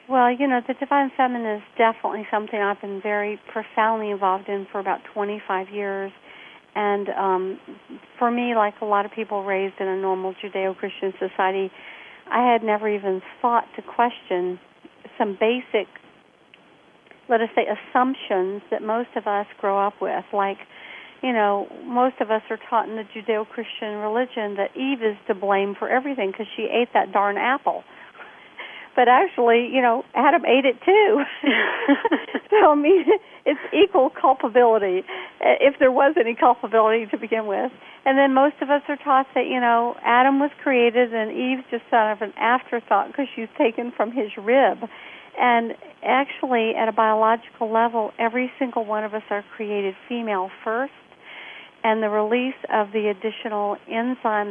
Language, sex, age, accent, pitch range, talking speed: English, female, 50-69, American, 205-245 Hz, 165 wpm